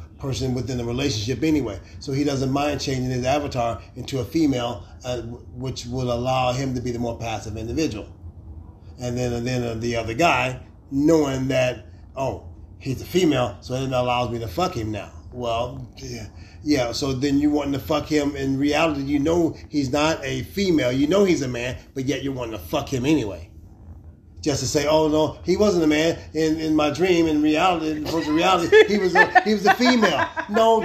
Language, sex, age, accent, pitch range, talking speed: English, male, 30-49, American, 120-170 Hz, 205 wpm